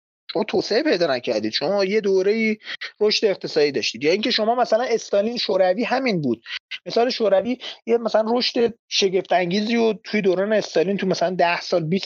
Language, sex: Persian, male